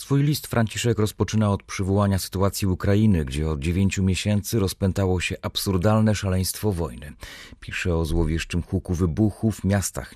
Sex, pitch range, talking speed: male, 90-110 Hz, 135 wpm